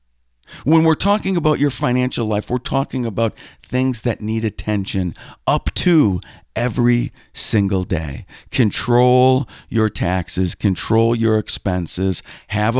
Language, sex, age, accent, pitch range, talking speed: English, male, 50-69, American, 105-135 Hz, 120 wpm